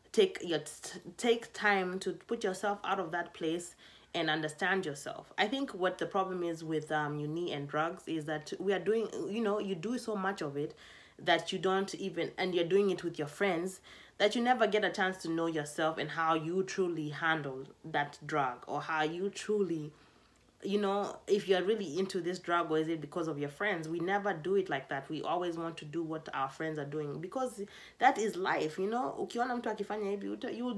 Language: English